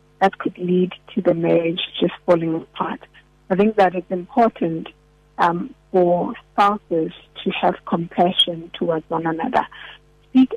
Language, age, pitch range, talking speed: English, 50-69, 175-200 Hz, 135 wpm